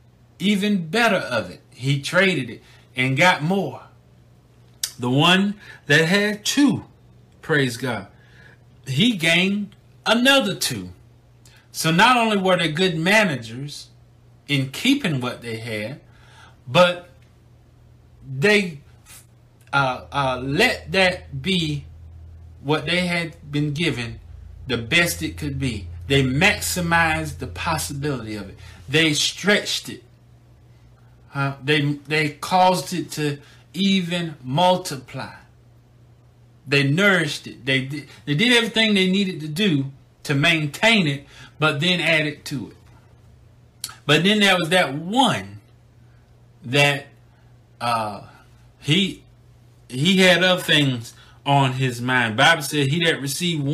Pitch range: 120-170 Hz